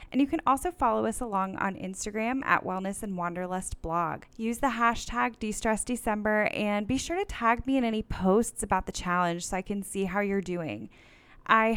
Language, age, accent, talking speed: English, 10-29, American, 195 wpm